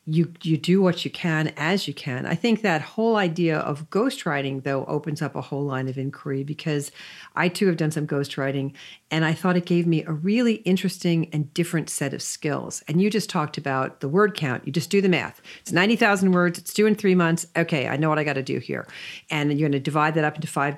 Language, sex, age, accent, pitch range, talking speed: English, female, 50-69, American, 145-180 Hz, 245 wpm